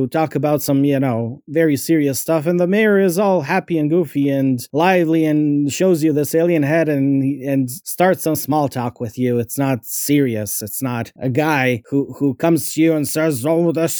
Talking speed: 205 wpm